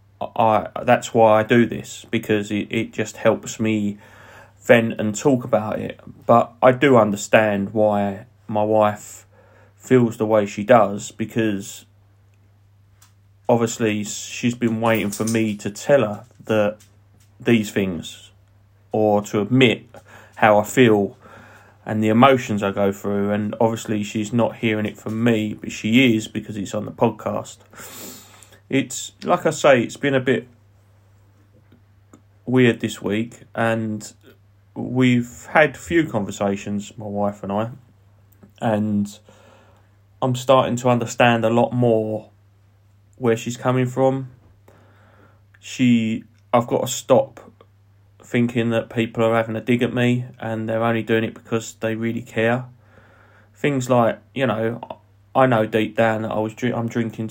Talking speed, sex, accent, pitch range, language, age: 145 wpm, male, British, 100-115 Hz, English, 30-49